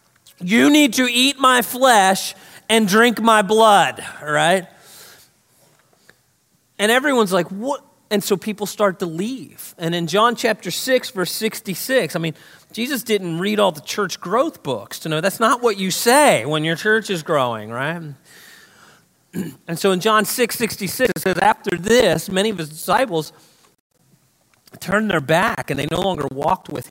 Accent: American